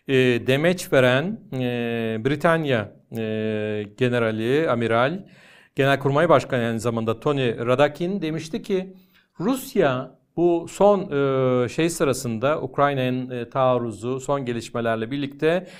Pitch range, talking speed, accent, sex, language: 125-190 Hz, 85 wpm, native, male, Turkish